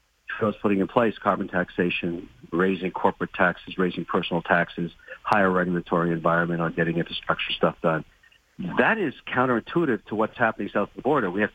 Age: 50-69